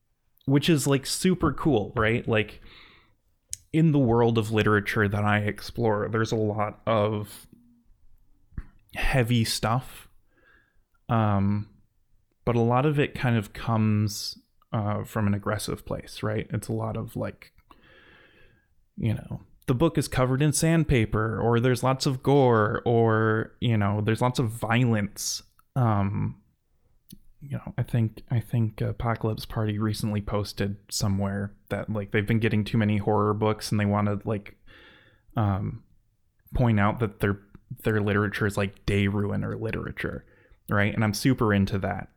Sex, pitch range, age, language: male, 105-115 Hz, 20-39, English